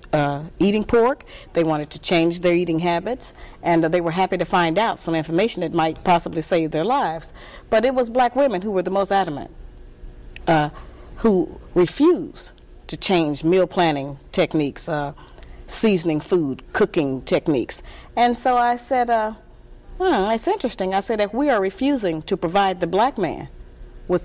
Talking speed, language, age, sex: 170 wpm, English, 40-59, female